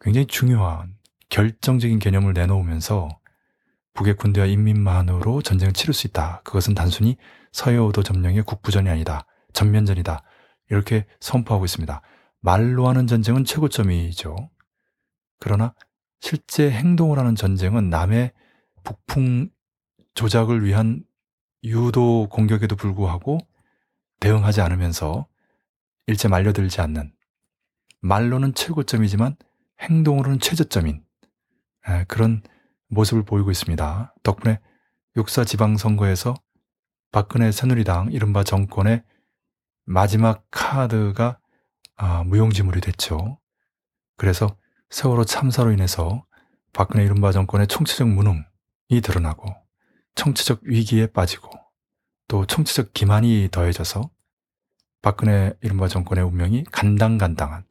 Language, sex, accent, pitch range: Korean, male, native, 95-115 Hz